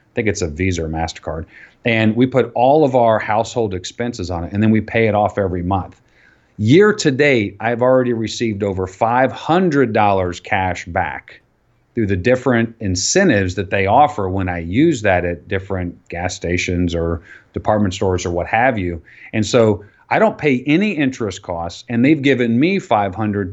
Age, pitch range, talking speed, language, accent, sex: 40-59, 95-125 Hz, 180 wpm, English, American, male